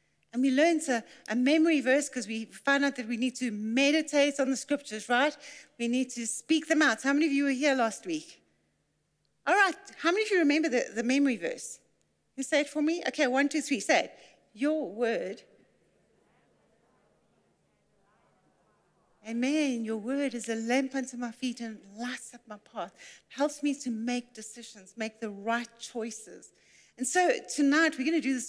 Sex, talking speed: female, 190 wpm